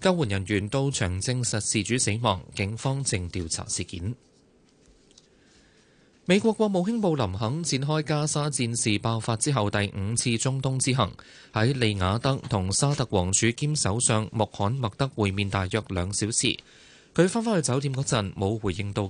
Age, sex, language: 20-39, male, Chinese